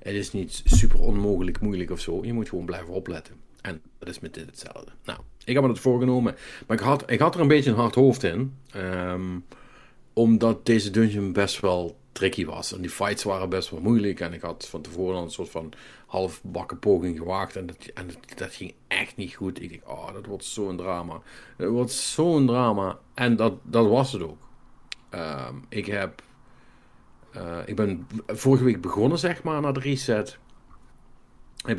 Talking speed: 190 wpm